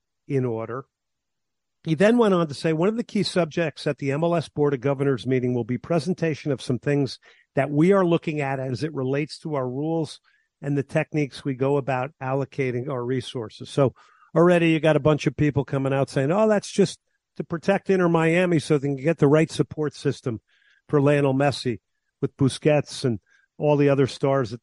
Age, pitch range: 50-69, 125-160 Hz